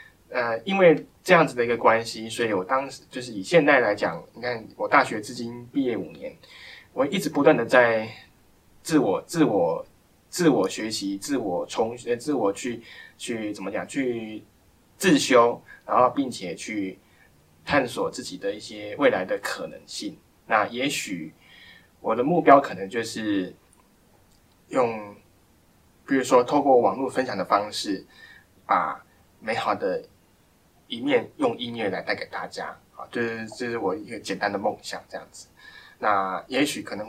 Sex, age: male, 20-39